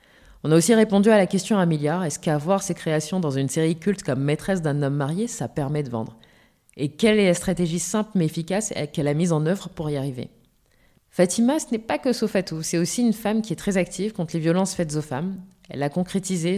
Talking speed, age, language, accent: 240 wpm, 20-39, French, French